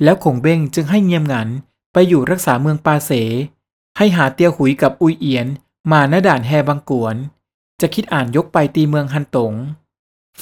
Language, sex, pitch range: Thai, male, 130-175 Hz